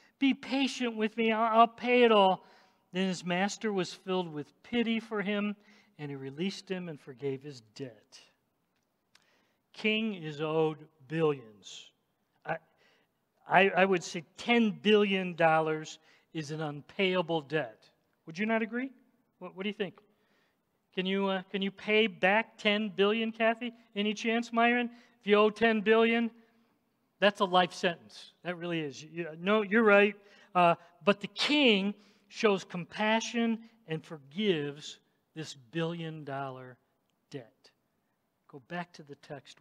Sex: male